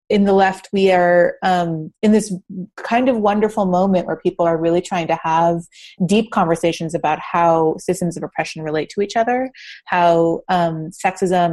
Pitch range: 170-200 Hz